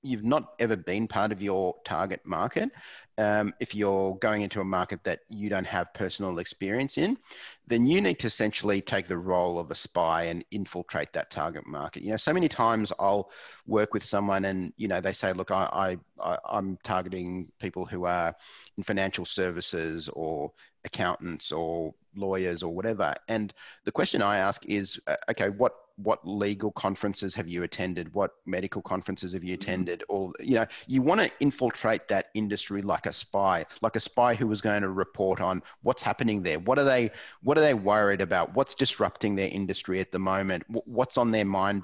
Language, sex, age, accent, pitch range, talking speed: English, male, 30-49, Australian, 95-115 Hz, 190 wpm